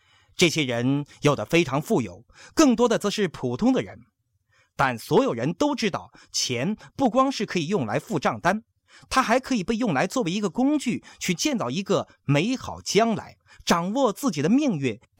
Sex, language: male, Chinese